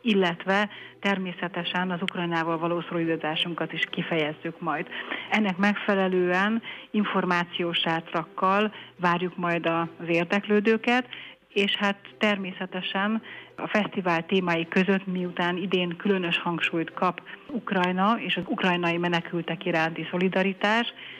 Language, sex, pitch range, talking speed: Hungarian, female, 170-200 Hz, 100 wpm